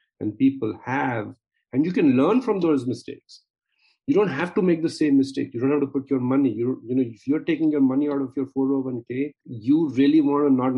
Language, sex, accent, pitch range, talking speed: English, male, Indian, 115-145 Hz, 235 wpm